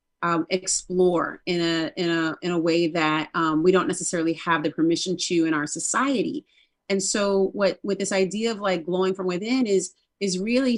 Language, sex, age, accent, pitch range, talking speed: English, female, 30-49, American, 175-210 Hz, 195 wpm